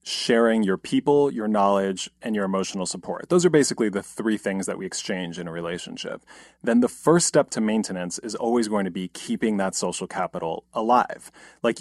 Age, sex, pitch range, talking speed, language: 30-49, male, 95-125 Hz, 195 wpm, English